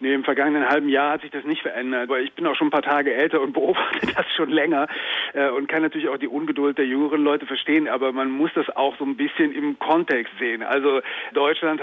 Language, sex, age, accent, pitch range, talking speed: German, male, 40-59, German, 135-155 Hz, 245 wpm